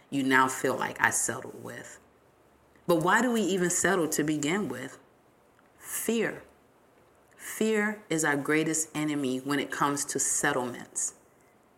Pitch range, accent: 145-215 Hz, American